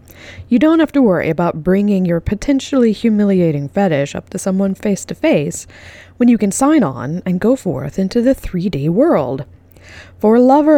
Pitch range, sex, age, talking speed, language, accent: 135-205 Hz, female, 20-39, 180 wpm, English, American